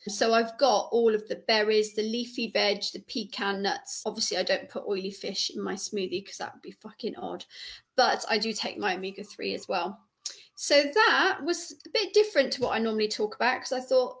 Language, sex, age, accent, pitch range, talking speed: English, female, 40-59, British, 210-265 Hz, 215 wpm